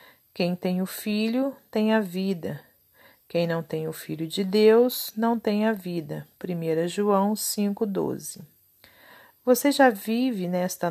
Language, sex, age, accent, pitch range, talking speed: Portuguese, female, 40-59, Brazilian, 175-210 Hz, 140 wpm